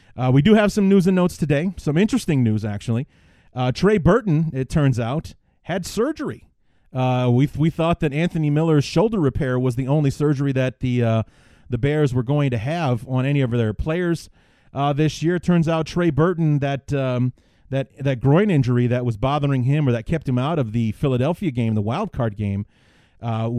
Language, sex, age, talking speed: English, male, 30-49, 205 wpm